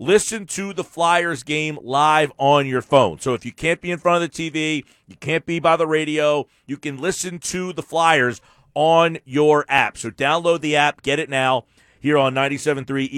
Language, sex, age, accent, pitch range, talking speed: English, male, 40-59, American, 130-175 Hz, 200 wpm